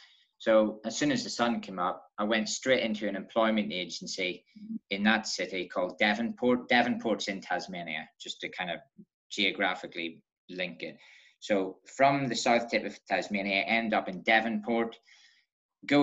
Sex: male